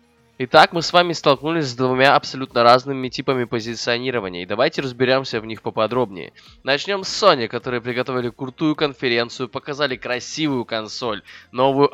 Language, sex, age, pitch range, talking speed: Russian, male, 20-39, 110-140 Hz, 140 wpm